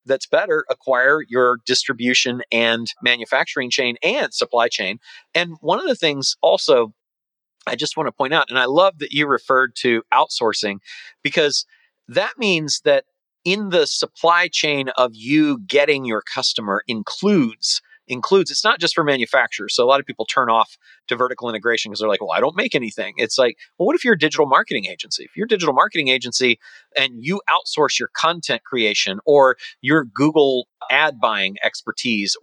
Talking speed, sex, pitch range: 180 wpm, male, 125-190 Hz